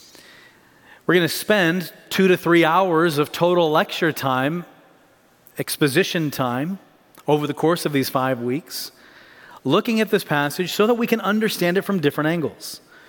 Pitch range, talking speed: 150-205 Hz, 155 wpm